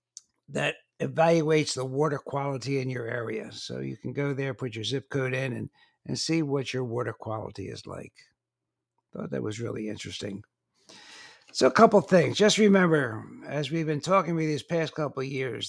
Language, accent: English, American